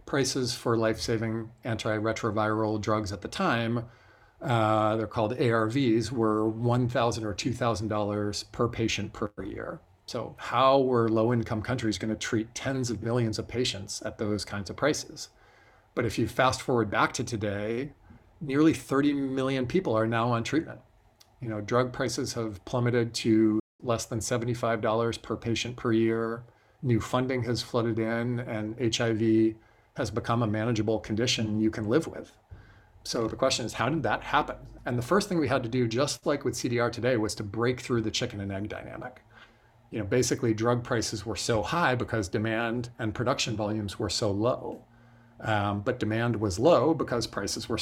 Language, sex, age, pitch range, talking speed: English, male, 40-59, 110-125 Hz, 170 wpm